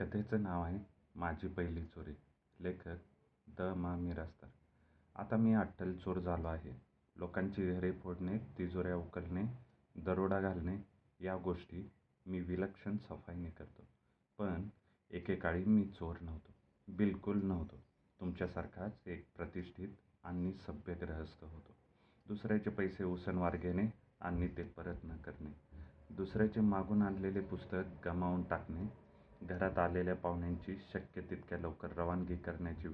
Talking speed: 115 wpm